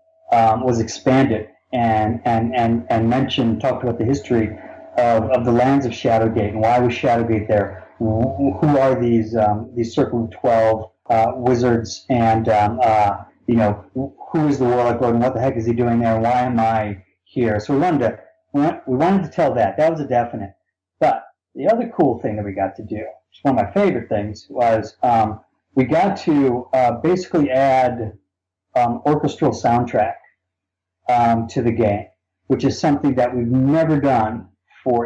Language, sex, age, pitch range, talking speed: English, male, 30-49, 110-130 Hz, 185 wpm